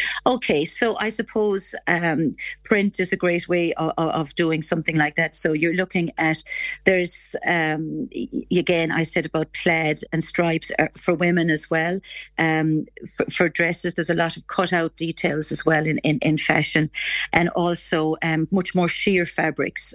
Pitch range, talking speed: 155-180 Hz, 170 wpm